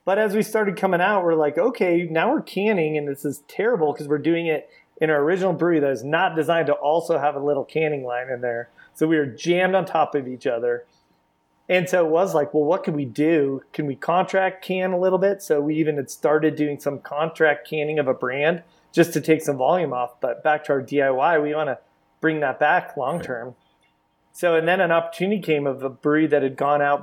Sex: male